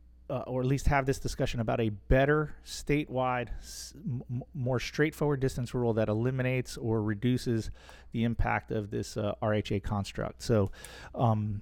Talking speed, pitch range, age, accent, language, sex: 155 wpm, 115-145 Hz, 30-49, American, English, male